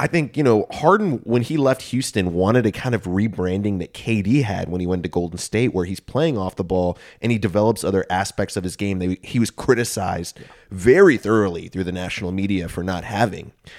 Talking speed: 220 wpm